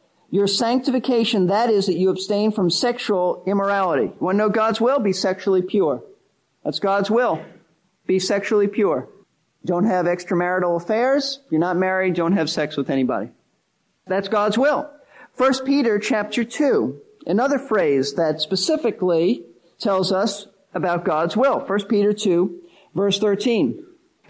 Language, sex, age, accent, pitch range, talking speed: English, male, 40-59, American, 185-255 Hz, 145 wpm